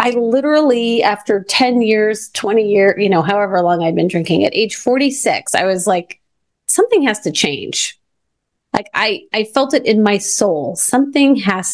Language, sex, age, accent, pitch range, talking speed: English, female, 30-49, American, 195-250 Hz, 180 wpm